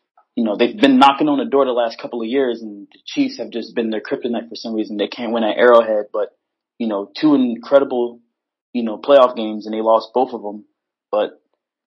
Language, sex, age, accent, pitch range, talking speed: English, male, 20-39, American, 115-140 Hz, 225 wpm